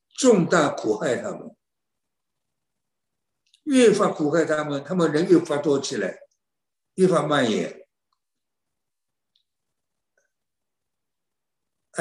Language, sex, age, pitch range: Chinese, male, 60-79, 130-170 Hz